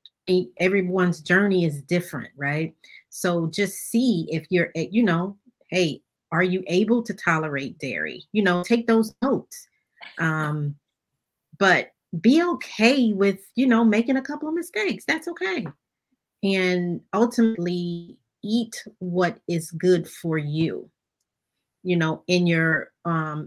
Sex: female